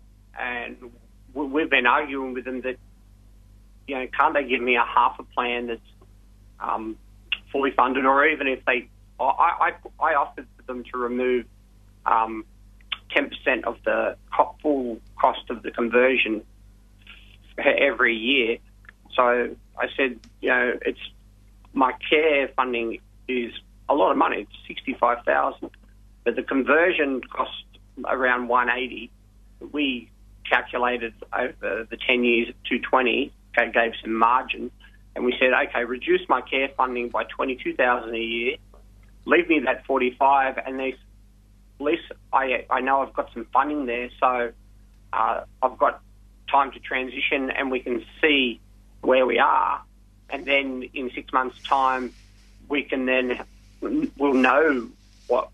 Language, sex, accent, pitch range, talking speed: English, male, Australian, 100-130 Hz, 145 wpm